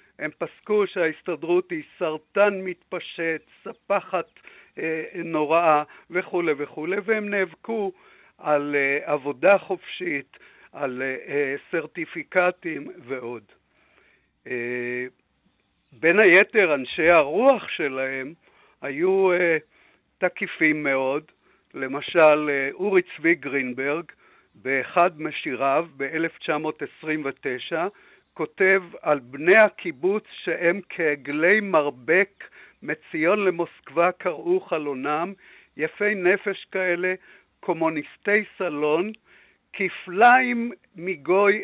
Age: 60-79